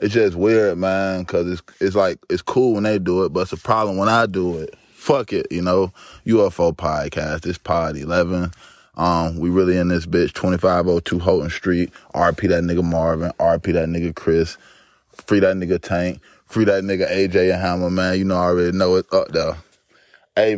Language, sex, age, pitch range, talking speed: English, male, 20-39, 85-115 Hz, 205 wpm